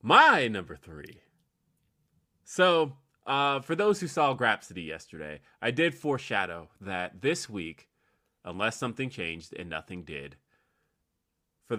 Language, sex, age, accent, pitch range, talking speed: English, male, 30-49, American, 85-110 Hz, 120 wpm